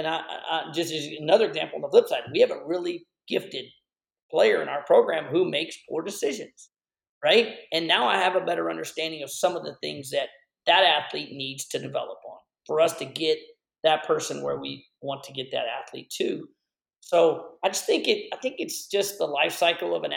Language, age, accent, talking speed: English, 40-59, American, 215 wpm